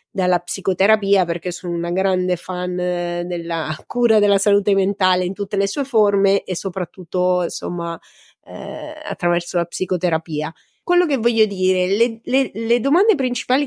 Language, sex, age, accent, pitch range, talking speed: Italian, female, 30-49, native, 185-235 Hz, 145 wpm